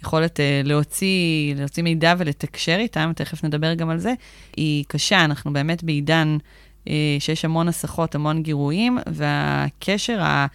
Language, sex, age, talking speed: Hebrew, female, 20-39, 135 wpm